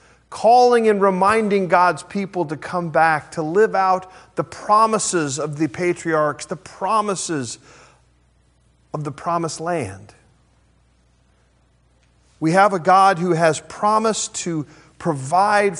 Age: 40-59